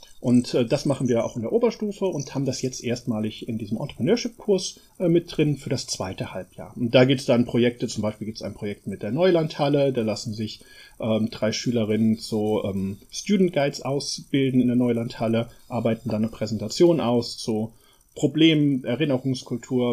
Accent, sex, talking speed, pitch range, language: German, male, 175 wpm, 115-155 Hz, German